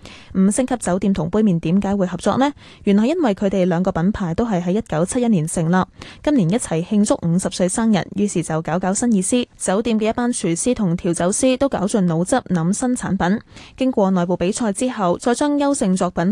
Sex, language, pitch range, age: female, Chinese, 175-235 Hz, 10-29